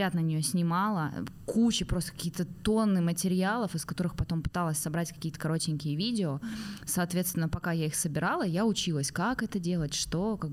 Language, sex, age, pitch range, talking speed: Russian, female, 20-39, 155-185 Hz, 160 wpm